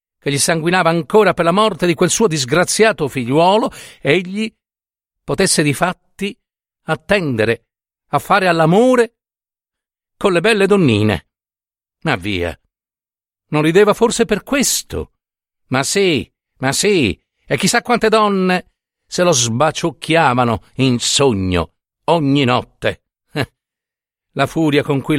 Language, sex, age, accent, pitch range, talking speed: Italian, male, 60-79, native, 125-195 Hz, 120 wpm